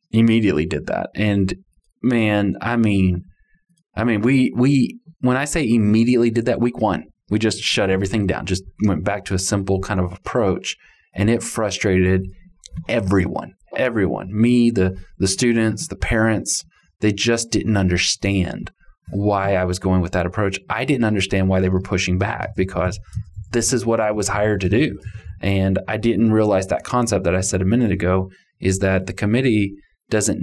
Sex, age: male, 20-39